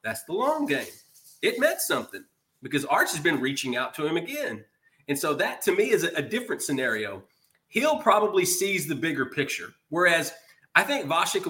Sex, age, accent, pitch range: male, 30-49, American, 140-185 Hz